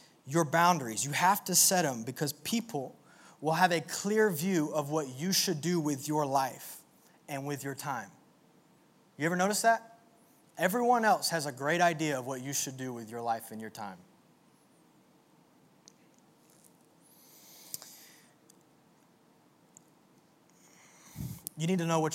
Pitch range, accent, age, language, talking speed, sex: 145-195 Hz, American, 20-39, English, 140 wpm, male